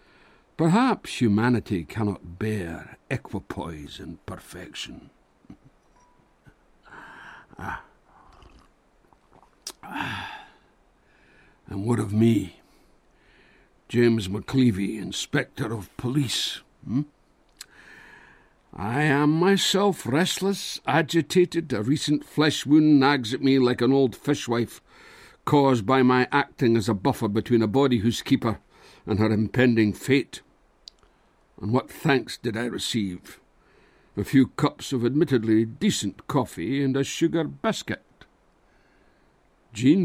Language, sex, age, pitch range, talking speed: English, male, 60-79, 110-145 Hz, 100 wpm